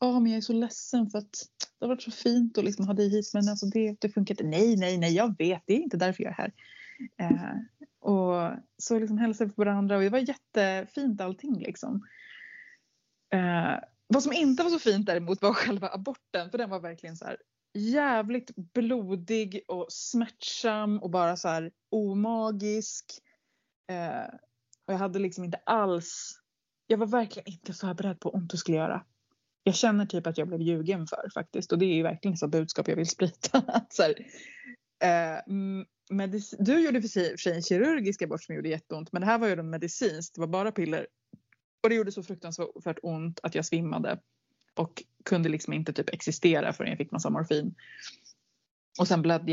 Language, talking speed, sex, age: Swedish, 200 wpm, female, 20-39